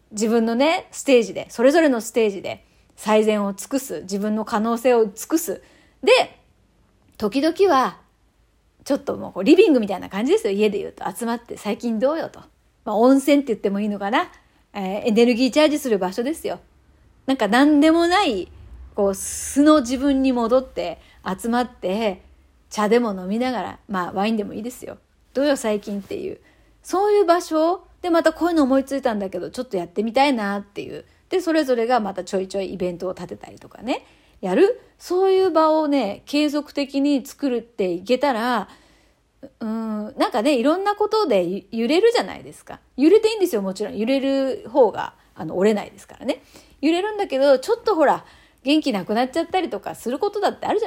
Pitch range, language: 210-305 Hz, Japanese